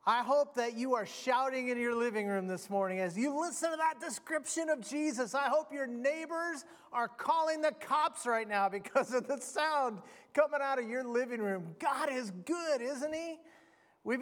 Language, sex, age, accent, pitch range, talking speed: English, male, 30-49, American, 205-280 Hz, 195 wpm